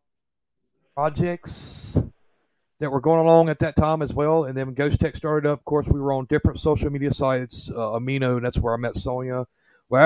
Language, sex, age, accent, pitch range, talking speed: English, male, 40-59, American, 115-145 Hz, 210 wpm